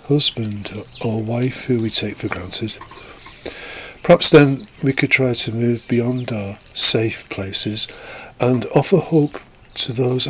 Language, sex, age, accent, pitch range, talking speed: English, male, 50-69, British, 100-130 Hz, 140 wpm